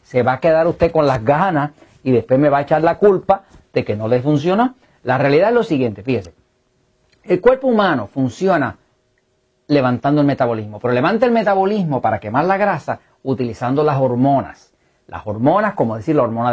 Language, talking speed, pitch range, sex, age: English, 185 wpm, 120-180 Hz, male, 40-59